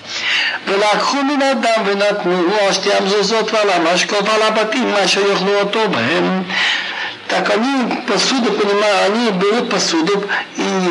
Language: Russian